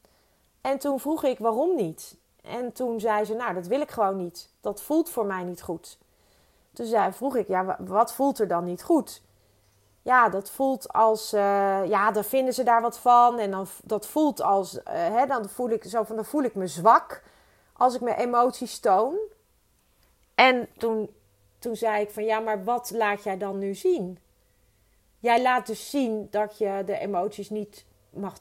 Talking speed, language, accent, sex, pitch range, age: 165 wpm, Dutch, Dutch, female, 210-265 Hz, 30-49